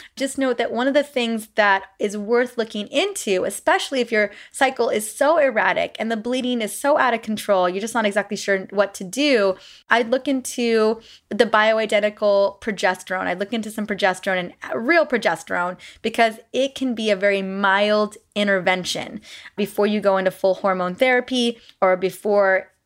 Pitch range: 195-235 Hz